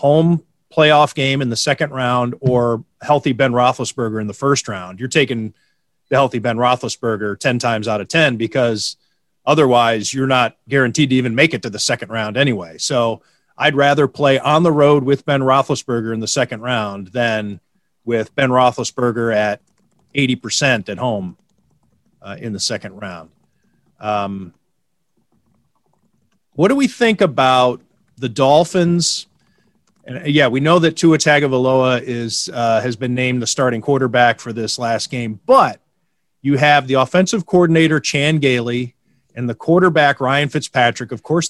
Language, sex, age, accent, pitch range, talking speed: English, male, 40-59, American, 120-150 Hz, 155 wpm